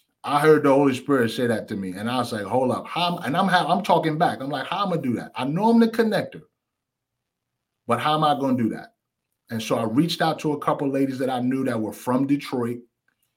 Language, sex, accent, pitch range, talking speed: English, male, American, 115-150 Hz, 260 wpm